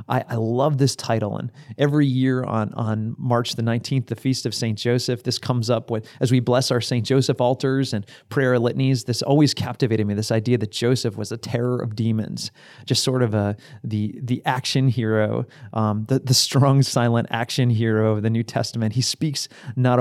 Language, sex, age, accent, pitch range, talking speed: English, male, 30-49, American, 115-135 Hz, 200 wpm